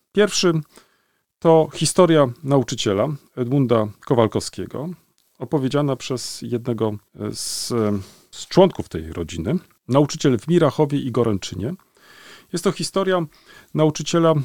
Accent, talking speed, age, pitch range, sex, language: native, 95 wpm, 40-59, 115-160 Hz, male, Polish